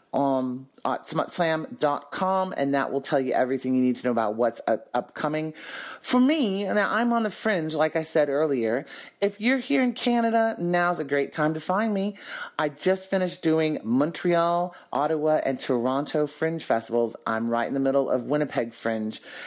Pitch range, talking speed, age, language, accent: 135-190 Hz, 175 wpm, 40-59, English, American